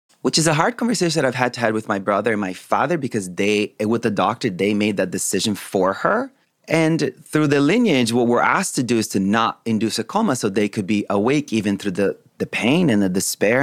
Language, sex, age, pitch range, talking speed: English, male, 30-49, 100-125 Hz, 240 wpm